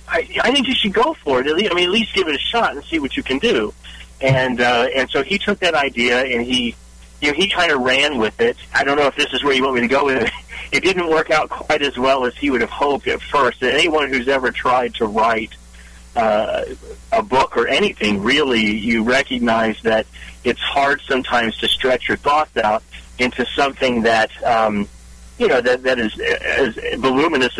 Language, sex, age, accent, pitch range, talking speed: English, male, 40-59, American, 105-135 Hz, 225 wpm